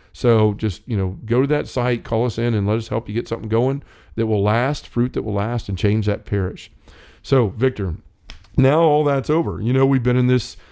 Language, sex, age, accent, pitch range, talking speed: English, male, 40-59, American, 105-125 Hz, 235 wpm